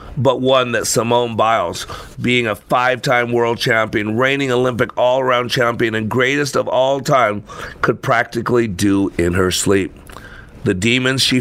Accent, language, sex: American, English, male